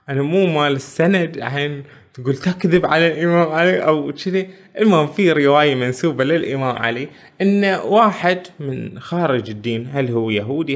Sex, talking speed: male, 150 wpm